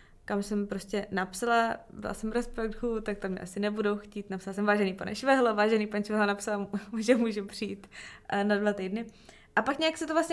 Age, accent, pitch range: 20-39, native, 205-240 Hz